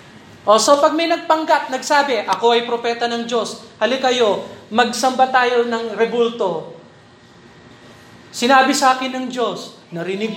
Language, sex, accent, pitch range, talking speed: Filipino, male, native, 185-245 Hz, 125 wpm